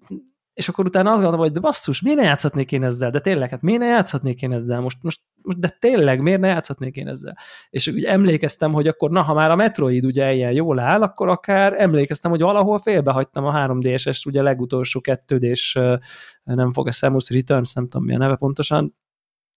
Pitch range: 135-185 Hz